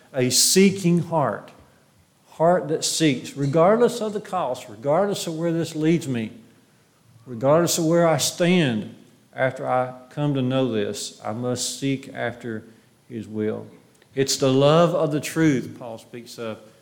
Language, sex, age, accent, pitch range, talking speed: English, male, 50-69, American, 120-150 Hz, 150 wpm